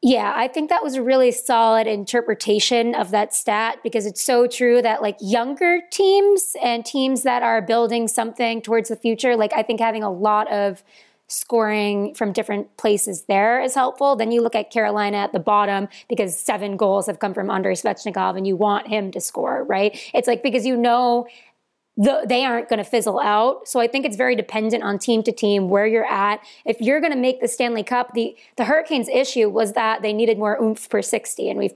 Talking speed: 215 wpm